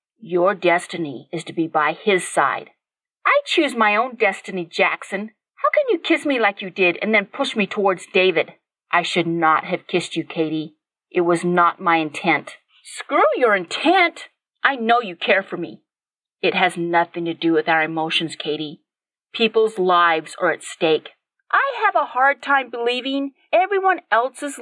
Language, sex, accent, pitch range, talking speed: English, female, American, 175-245 Hz, 175 wpm